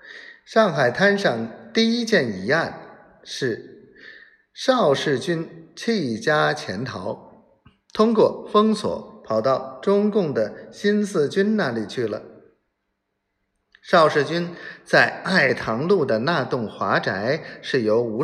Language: Chinese